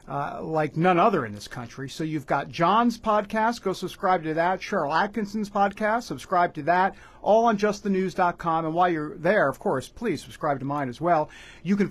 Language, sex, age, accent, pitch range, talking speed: English, male, 50-69, American, 170-225 Hz, 195 wpm